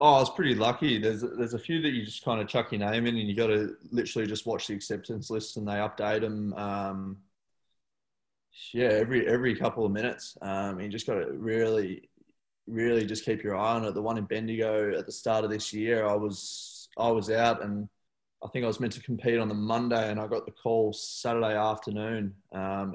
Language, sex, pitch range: English, male, 105-115 Hz